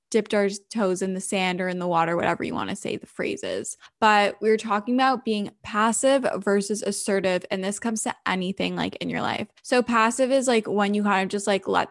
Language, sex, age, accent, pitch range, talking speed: English, female, 10-29, American, 190-225 Hz, 225 wpm